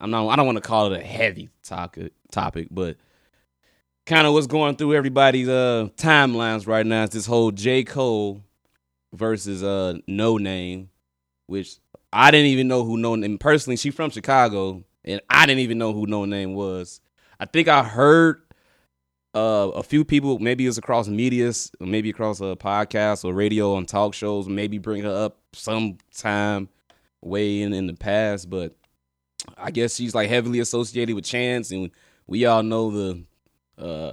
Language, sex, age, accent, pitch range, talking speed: English, male, 20-39, American, 95-125 Hz, 170 wpm